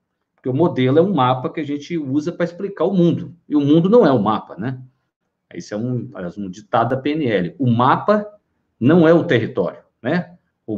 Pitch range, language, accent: 125-165 Hz, Portuguese, Brazilian